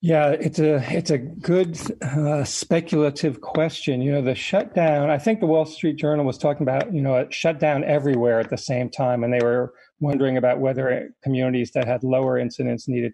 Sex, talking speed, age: male, 195 wpm, 40-59